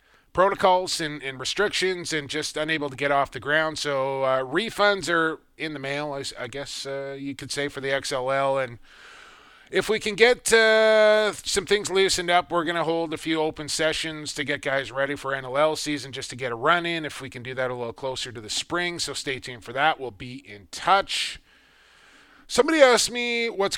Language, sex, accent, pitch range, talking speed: English, male, American, 130-170 Hz, 210 wpm